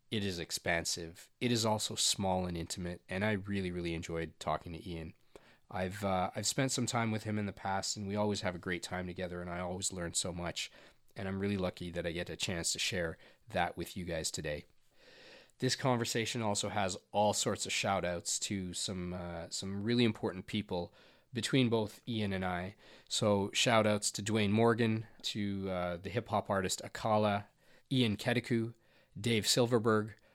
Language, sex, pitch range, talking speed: English, male, 95-115 Hz, 185 wpm